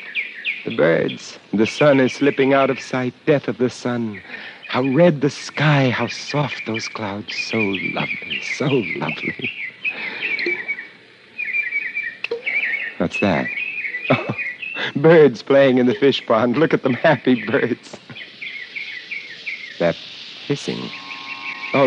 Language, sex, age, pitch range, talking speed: English, male, 60-79, 90-135 Hz, 110 wpm